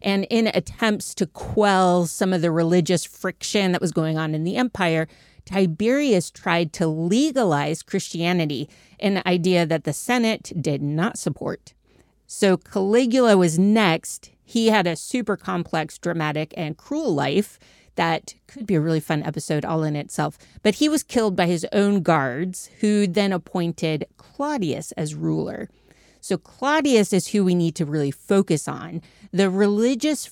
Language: English